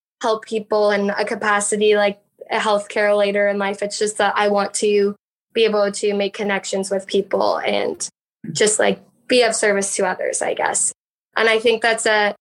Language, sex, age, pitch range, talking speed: English, female, 10-29, 205-240 Hz, 190 wpm